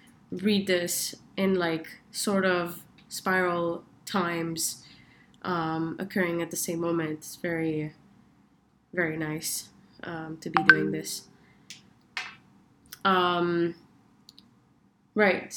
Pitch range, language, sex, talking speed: 175-205 Hz, English, female, 95 wpm